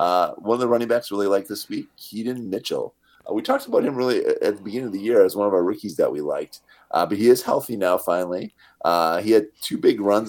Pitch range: 90-125 Hz